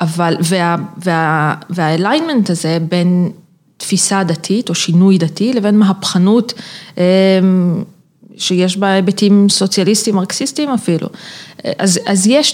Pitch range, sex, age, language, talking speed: 170-205 Hz, female, 30-49, Hebrew, 105 wpm